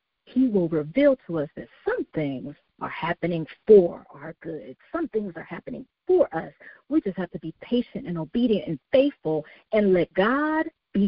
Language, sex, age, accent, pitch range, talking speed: English, female, 50-69, American, 170-245 Hz, 180 wpm